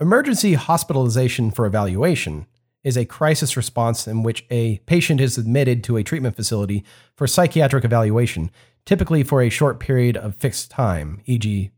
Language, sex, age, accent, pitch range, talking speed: English, male, 40-59, American, 115-145 Hz, 155 wpm